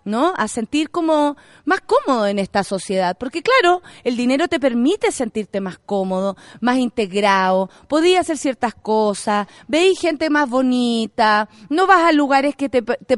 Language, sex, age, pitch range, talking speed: Spanish, female, 30-49, 220-320 Hz, 160 wpm